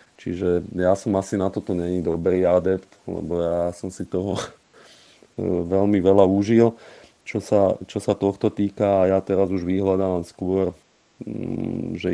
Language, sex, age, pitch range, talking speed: Slovak, male, 40-59, 85-95 Hz, 150 wpm